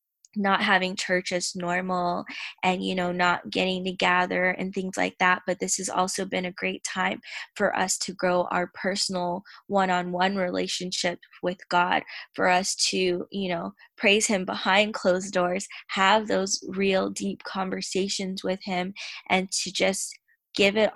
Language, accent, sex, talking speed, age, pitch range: English, American, female, 160 wpm, 10-29, 180-195 Hz